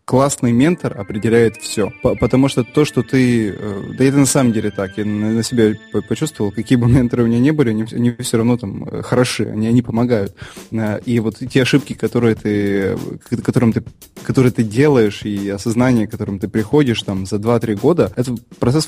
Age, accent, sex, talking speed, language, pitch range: 20-39, native, male, 170 wpm, Russian, 105-125 Hz